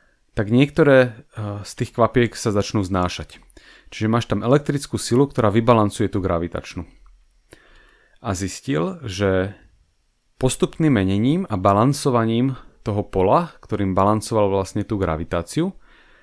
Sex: male